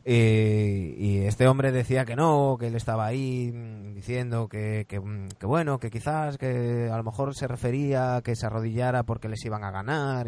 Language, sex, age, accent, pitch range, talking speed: Spanish, male, 20-39, Spanish, 100-120 Hz, 185 wpm